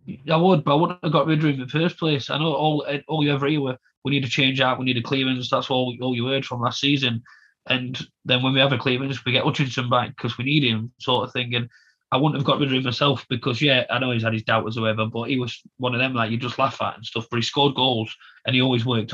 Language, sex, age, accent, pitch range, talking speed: English, male, 30-49, British, 115-140 Hz, 300 wpm